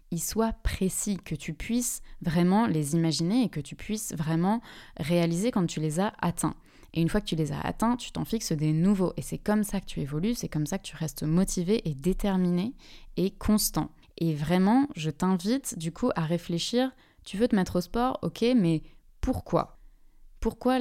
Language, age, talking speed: French, 20-39, 195 wpm